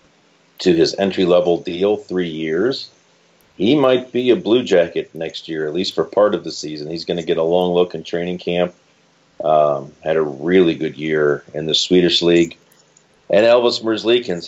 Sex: male